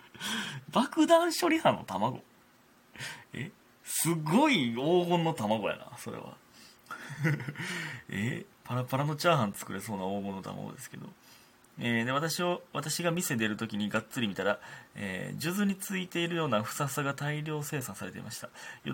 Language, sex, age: Japanese, male, 30-49